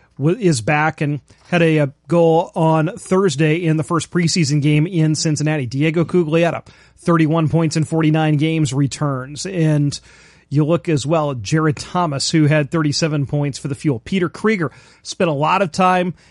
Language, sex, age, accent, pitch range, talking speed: English, male, 40-59, American, 150-175 Hz, 165 wpm